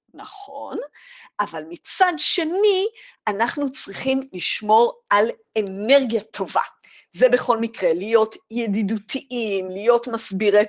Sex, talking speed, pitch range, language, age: female, 95 wpm, 210-330 Hz, Hebrew, 50-69